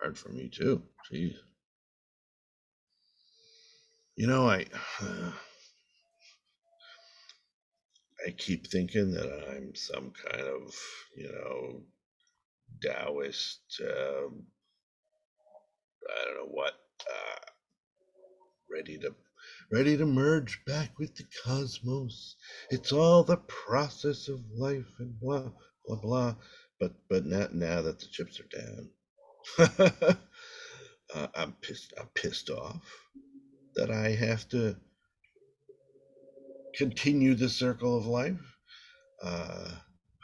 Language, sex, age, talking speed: English, male, 50-69, 100 wpm